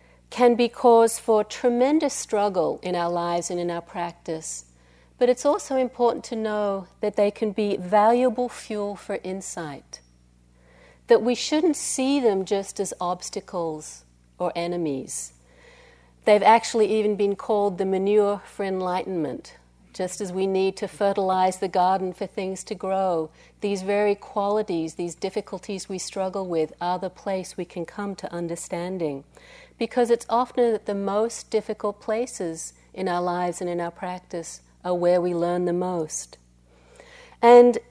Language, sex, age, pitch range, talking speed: English, female, 50-69, 165-210 Hz, 150 wpm